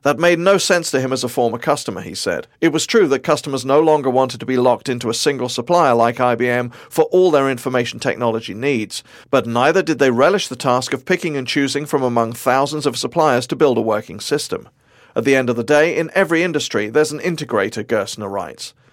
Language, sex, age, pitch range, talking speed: English, male, 40-59, 125-160 Hz, 220 wpm